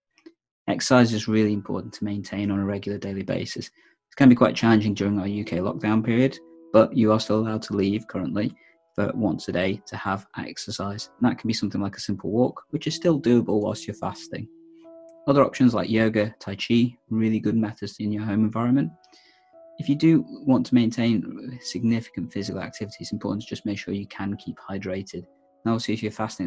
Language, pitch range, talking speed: English, 100-125 Hz, 200 wpm